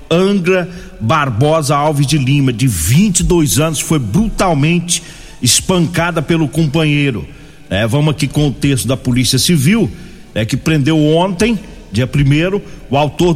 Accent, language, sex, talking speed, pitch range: Brazilian, Portuguese, male, 135 wpm, 150-185 Hz